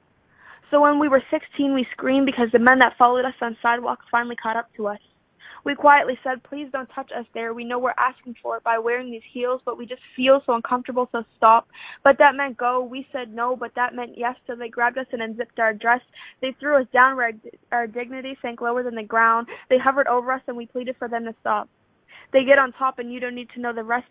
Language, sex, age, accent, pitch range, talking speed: English, female, 10-29, American, 235-260 Hz, 250 wpm